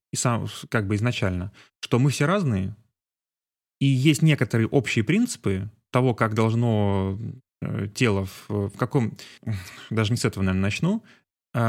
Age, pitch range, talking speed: 20-39, 105-130 Hz, 140 wpm